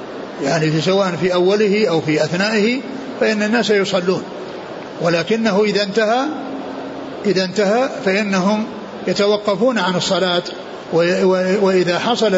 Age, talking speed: 60-79, 100 wpm